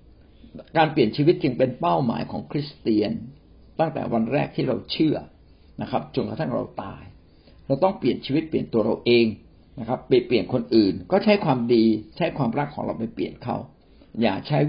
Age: 60-79